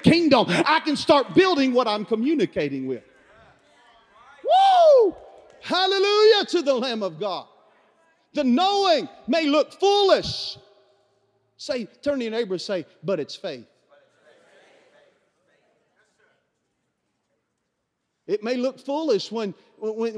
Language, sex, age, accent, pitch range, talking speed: English, male, 40-59, American, 240-315 Hz, 110 wpm